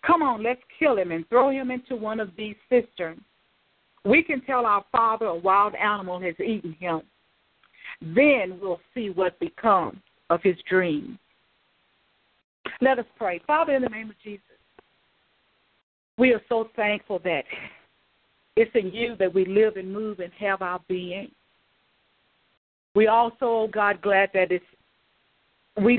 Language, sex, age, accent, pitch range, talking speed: English, female, 50-69, American, 185-230 Hz, 150 wpm